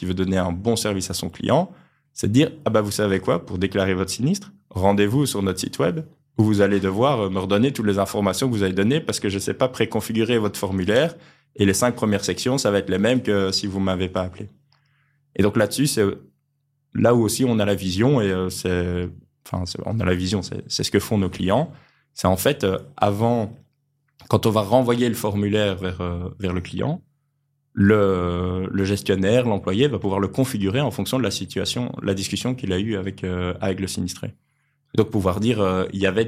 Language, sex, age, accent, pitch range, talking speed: French, male, 20-39, French, 95-120 Hz, 225 wpm